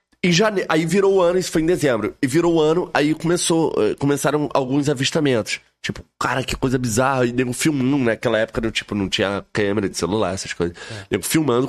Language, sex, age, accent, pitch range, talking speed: Portuguese, male, 20-39, Brazilian, 120-160 Hz, 205 wpm